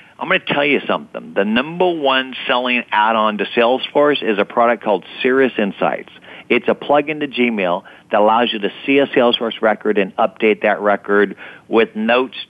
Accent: American